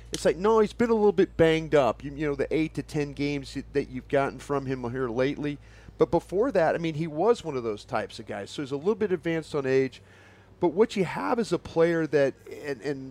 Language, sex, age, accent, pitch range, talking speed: English, male, 40-59, American, 130-170 Hz, 250 wpm